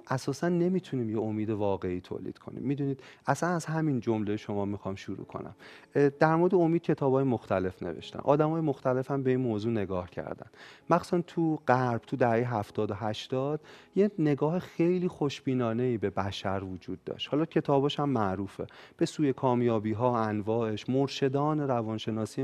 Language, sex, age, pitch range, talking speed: Persian, male, 30-49, 115-150 Hz, 155 wpm